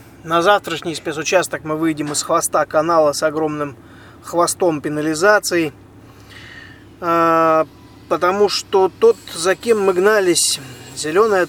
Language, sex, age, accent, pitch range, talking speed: Russian, male, 20-39, native, 145-175 Hz, 105 wpm